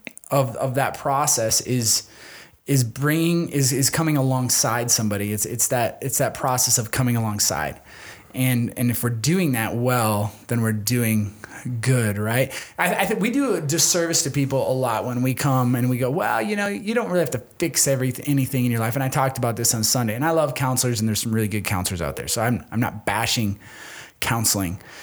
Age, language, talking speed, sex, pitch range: 20-39, English, 215 wpm, male, 115-145 Hz